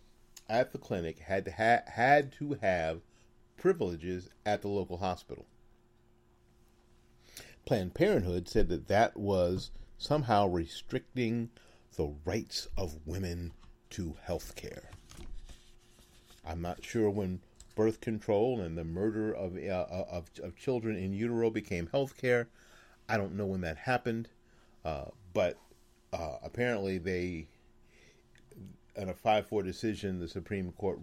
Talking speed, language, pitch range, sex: 120 wpm, English, 90-115 Hz, male